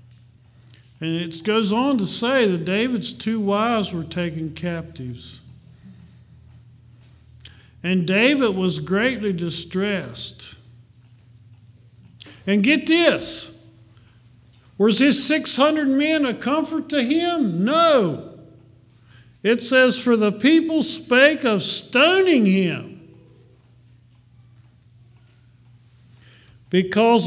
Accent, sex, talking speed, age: American, male, 90 wpm, 50-69